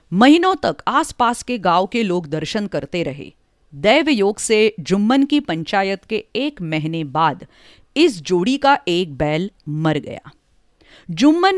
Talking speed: 140 wpm